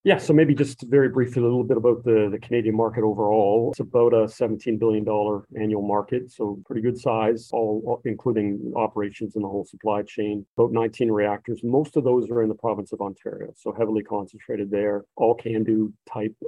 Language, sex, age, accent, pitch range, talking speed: English, male, 40-59, American, 105-115 Hz, 195 wpm